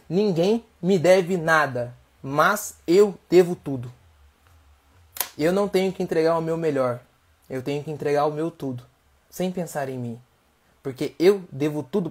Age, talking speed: 20-39, 155 wpm